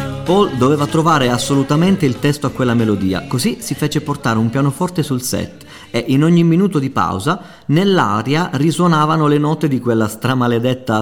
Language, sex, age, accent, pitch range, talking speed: Italian, male, 30-49, native, 110-150 Hz, 165 wpm